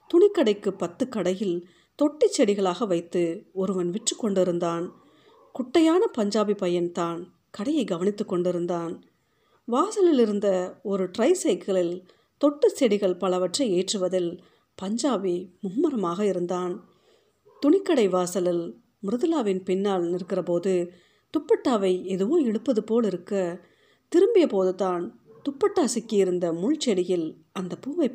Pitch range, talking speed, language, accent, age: 175-245 Hz, 95 wpm, Tamil, native, 50-69